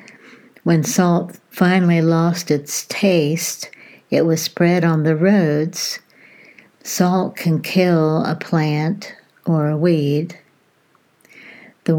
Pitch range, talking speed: 160-185 Hz, 105 wpm